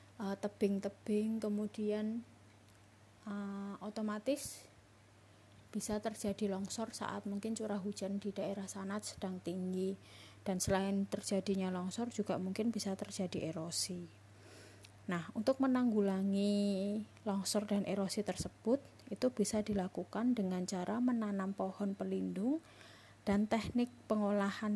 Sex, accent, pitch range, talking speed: female, native, 180-215 Hz, 105 wpm